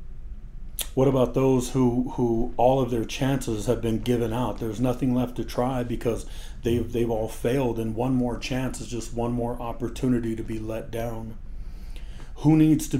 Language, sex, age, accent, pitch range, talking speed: English, male, 30-49, American, 110-125 Hz, 180 wpm